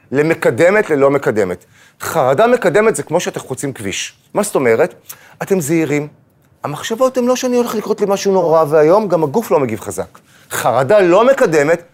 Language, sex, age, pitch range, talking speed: Hebrew, male, 30-49, 130-195 Hz, 165 wpm